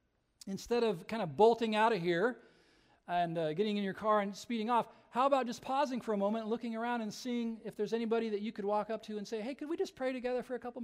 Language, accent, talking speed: English, American, 270 wpm